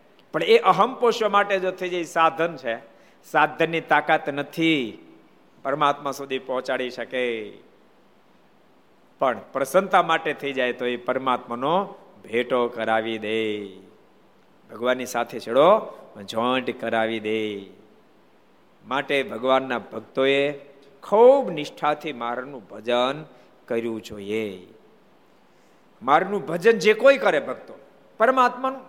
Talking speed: 65 wpm